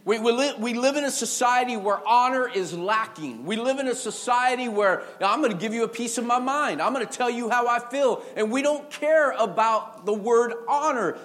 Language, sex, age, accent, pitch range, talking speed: English, male, 40-59, American, 215-270 Hz, 235 wpm